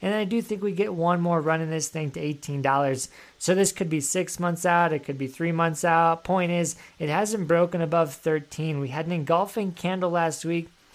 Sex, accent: male, American